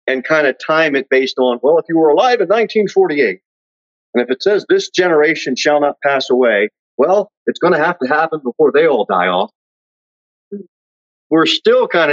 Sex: male